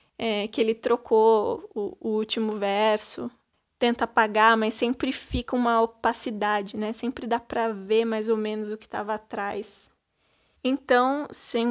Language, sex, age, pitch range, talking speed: Portuguese, female, 20-39, 220-260 Hz, 145 wpm